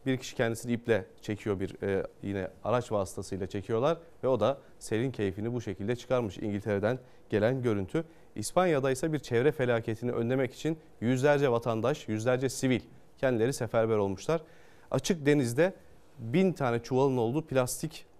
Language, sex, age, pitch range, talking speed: Turkish, male, 30-49, 115-140 Hz, 140 wpm